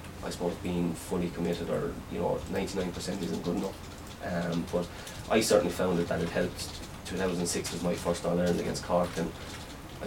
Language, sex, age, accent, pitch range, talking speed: English, male, 20-39, Irish, 85-90 Hz, 195 wpm